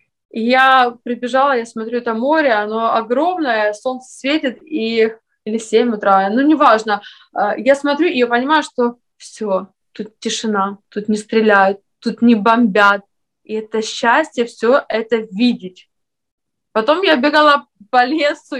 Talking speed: 130 wpm